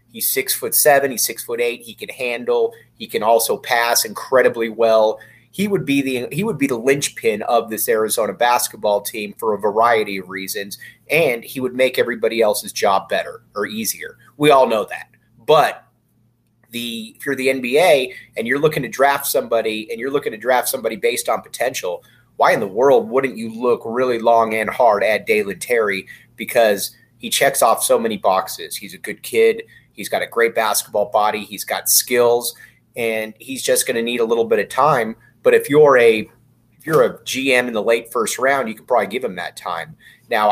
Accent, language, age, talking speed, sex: American, English, 30-49, 205 wpm, male